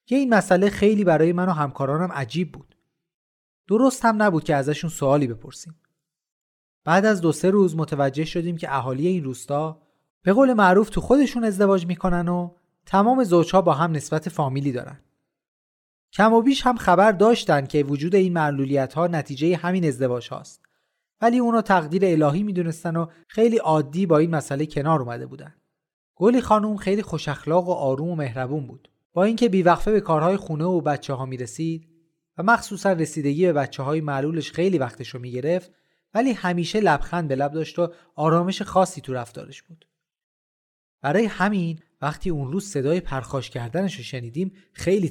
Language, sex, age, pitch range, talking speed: Persian, male, 30-49, 145-190 Hz, 165 wpm